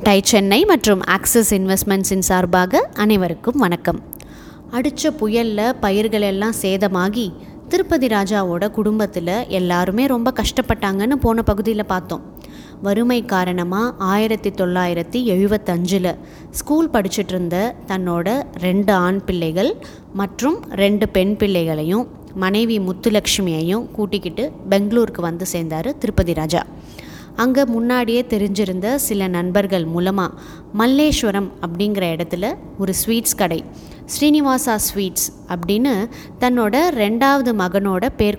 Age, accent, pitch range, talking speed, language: 20-39, native, 185-235 Hz, 100 wpm, Tamil